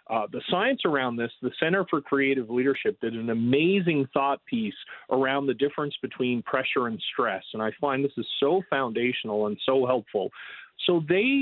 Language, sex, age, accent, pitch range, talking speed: English, male, 40-59, American, 130-185 Hz, 180 wpm